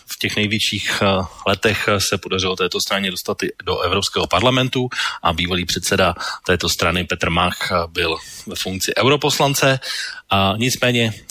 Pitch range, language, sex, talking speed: 95-115 Hz, Slovak, male, 140 wpm